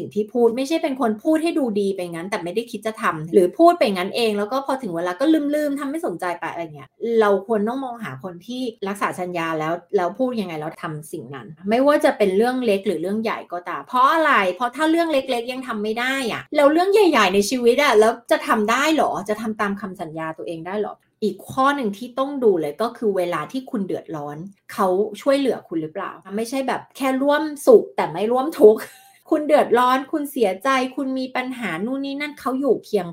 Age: 20-39